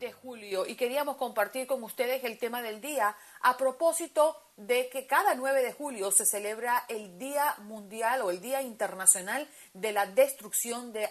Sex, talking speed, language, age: female, 175 wpm, Spanish, 40-59